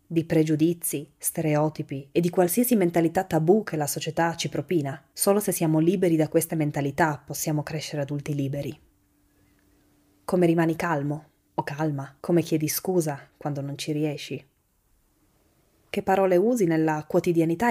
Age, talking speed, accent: 20-39, 140 wpm, native